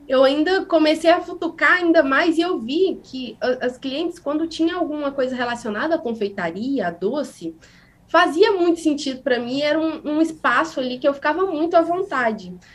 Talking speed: 180 wpm